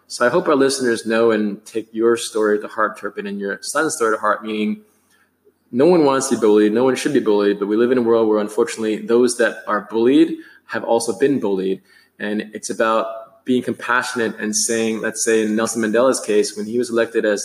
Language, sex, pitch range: English, male, 105-125 Hz